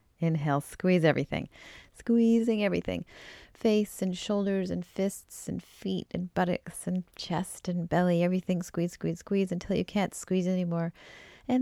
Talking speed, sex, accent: 145 wpm, female, American